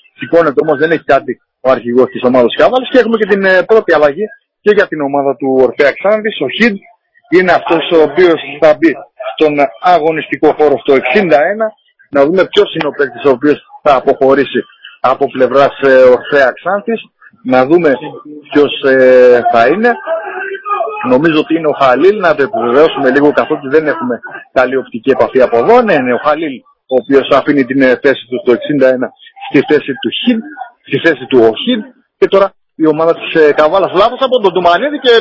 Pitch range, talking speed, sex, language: 150-245 Hz, 180 wpm, male, Greek